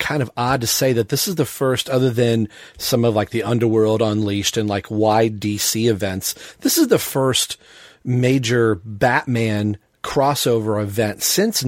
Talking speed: 165 wpm